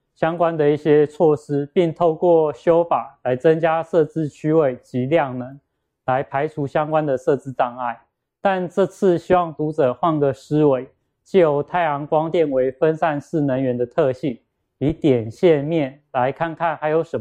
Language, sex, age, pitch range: Chinese, male, 20-39, 130-170 Hz